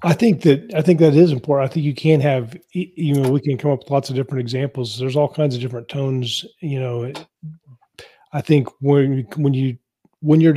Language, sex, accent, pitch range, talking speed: English, male, American, 120-145 Hz, 220 wpm